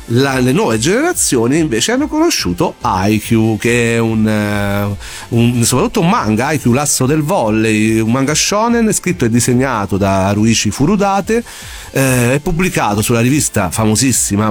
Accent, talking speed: native, 145 wpm